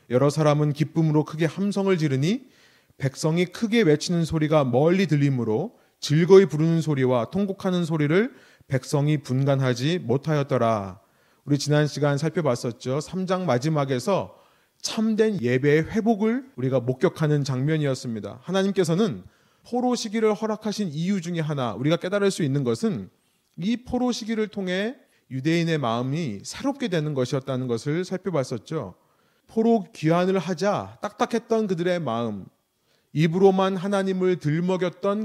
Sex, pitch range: male, 145-200 Hz